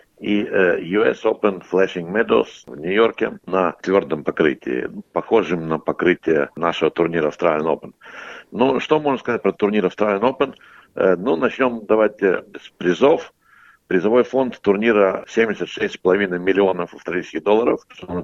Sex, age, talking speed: male, 60-79, 125 wpm